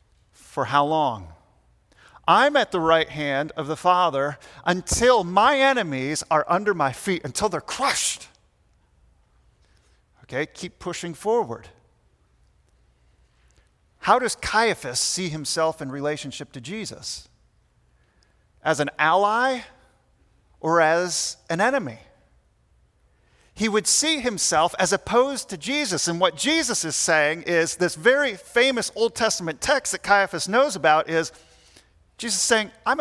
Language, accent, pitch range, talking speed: English, American, 145-190 Hz, 125 wpm